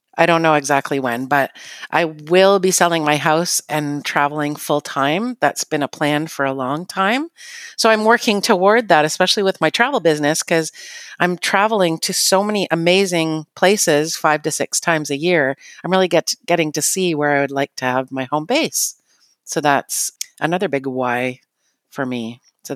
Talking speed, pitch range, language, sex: 190 wpm, 150-205 Hz, English, female